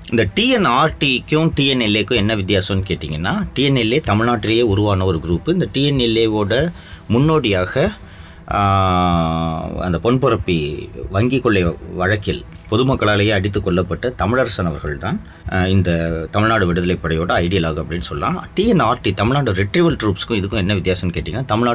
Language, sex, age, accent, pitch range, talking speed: Tamil, male, 30-49, native, 85-115 Hz, 105 wpm